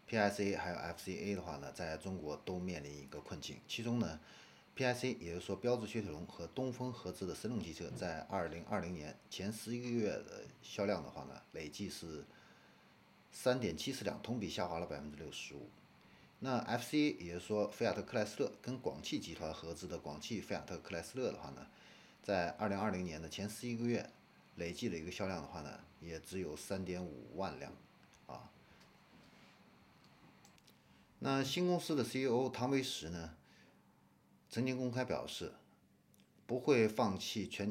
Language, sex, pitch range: Chinese, male, 80-115 Hz